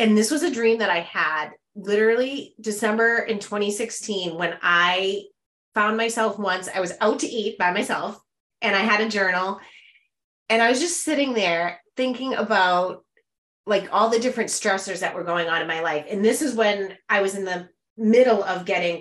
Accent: American